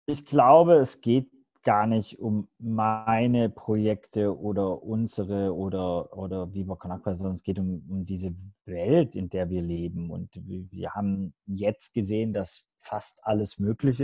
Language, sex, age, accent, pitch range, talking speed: German, male, 30-49, German, 100-120 Hz, 155 wpm